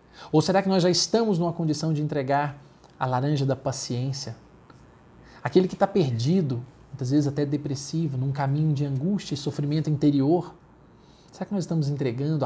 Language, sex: Portuguese, male